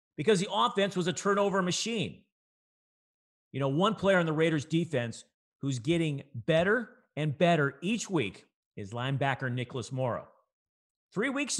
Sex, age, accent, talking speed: male, 50-69, American, 145 wpm